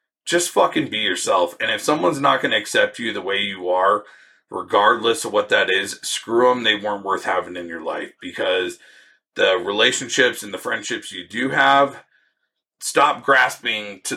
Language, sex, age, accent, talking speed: English, male, 40-59, American, 180 wpm